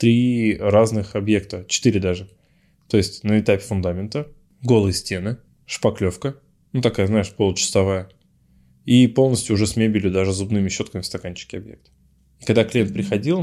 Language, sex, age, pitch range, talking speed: Russian, male, 20-39, 90-115 Hz, 145 wpm